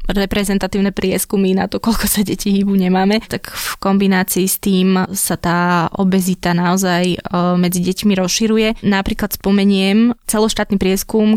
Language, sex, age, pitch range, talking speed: Slovak, female, 20-39, 180-195 Hz, 130 wpm